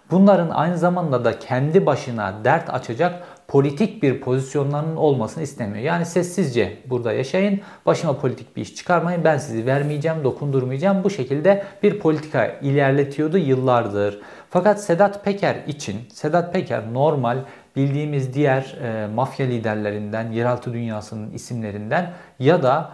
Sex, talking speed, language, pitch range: male, 130 wpm, Turkish, 120-165 Hz